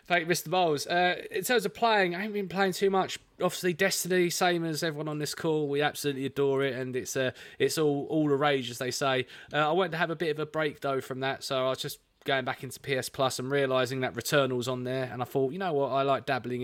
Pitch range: 120-150 Hz